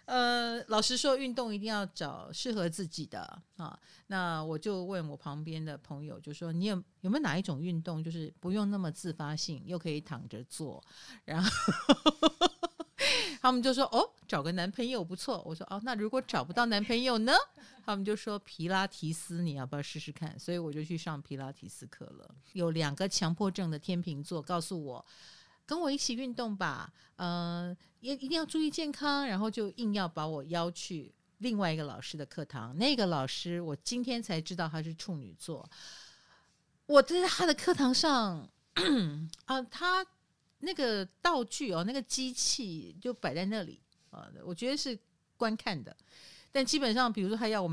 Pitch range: 165-240 Hz